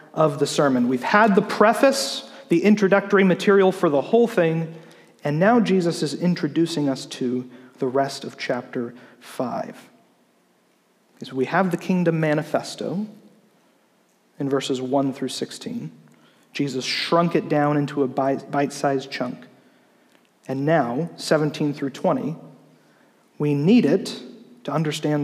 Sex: male